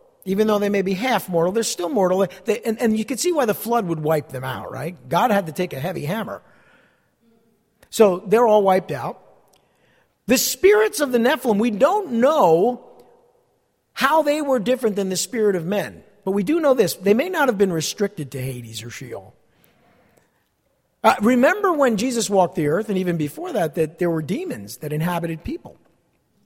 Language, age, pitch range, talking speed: English, 50-69, 175-255 Hz, 195 wpm